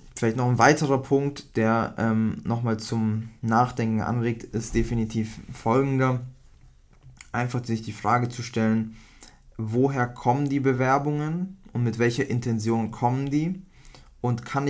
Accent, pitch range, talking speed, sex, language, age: German, 110-130 Hz, 130 wpm, male, German, 20-39